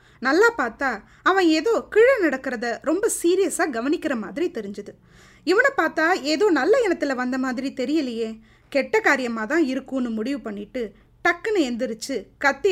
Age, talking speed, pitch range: 20-39, 130 wpm, 235-350 Hz